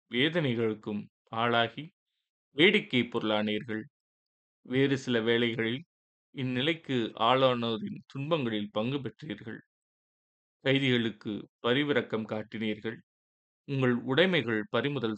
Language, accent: Tamil, native